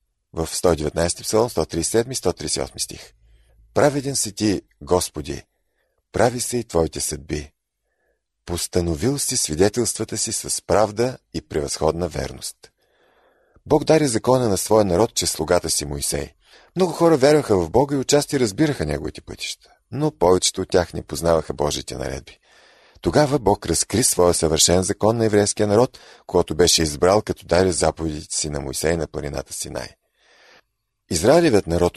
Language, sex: Bulgarian, male